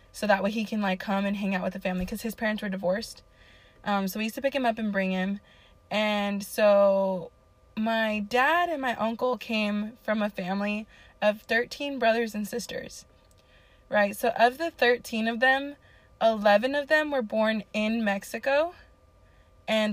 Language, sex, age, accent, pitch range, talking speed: English, female, 20-39, American, 195-230 Hz, 180 wpm